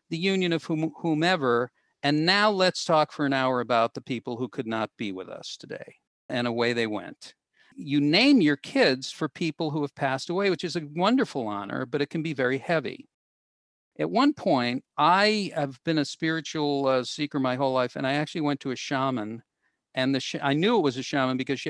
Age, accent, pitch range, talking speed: 50-69, American, 125-165 Hz, 215 wpm